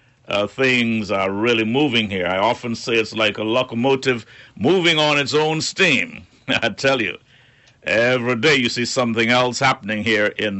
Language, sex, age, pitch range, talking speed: English, male, 60-79, 115-140 Hz, 170 wpm